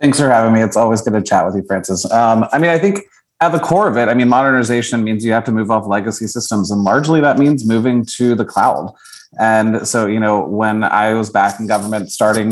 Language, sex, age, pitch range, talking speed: English, male, 30-49, 110-130 Hz, 250 wpm